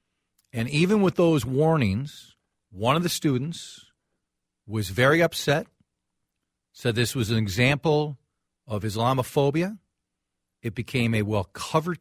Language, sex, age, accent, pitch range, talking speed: English, male, 50-69, American, 115-150 Hz, 115 wpm